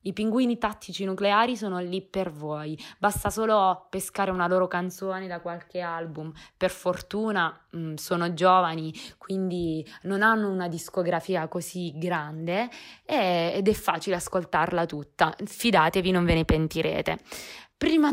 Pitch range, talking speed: 175-220 Hz, 130 wpm